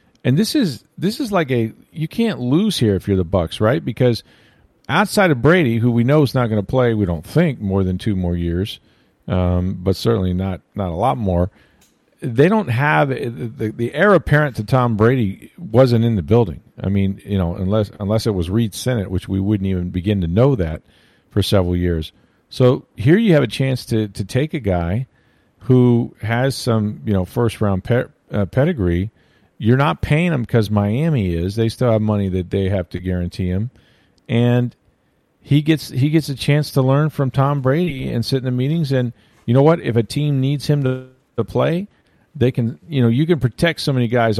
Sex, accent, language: male, American, English